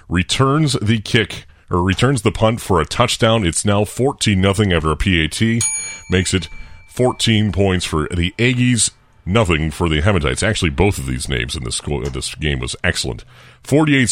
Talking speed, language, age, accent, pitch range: 170 wpm, English, 40-59, American, 85-110 Hz